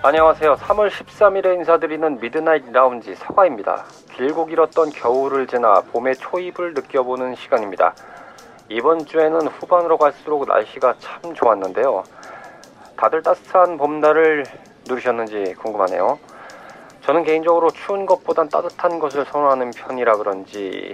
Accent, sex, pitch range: native, male, 125-180 Hz